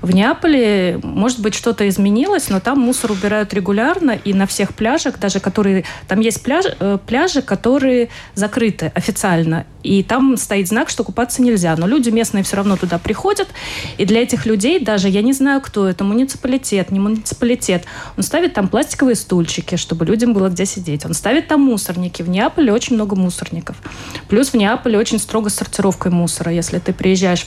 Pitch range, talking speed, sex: 175-230 Hz, 175 wpm, female